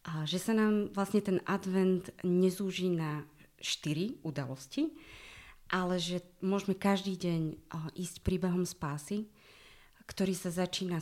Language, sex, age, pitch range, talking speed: Slovak, female, 30-49, 160-185 Hz, 120 wpm